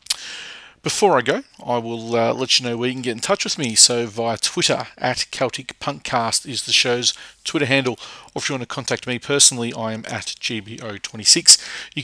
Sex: male